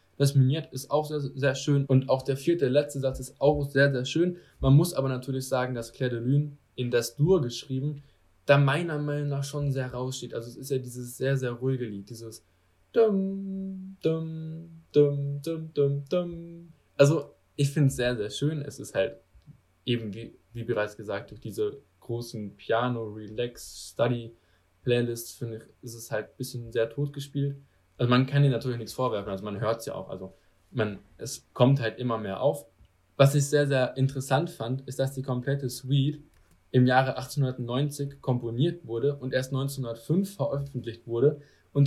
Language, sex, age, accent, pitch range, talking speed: German, male, 10-29, German, 115-145 Hz, 180 wpm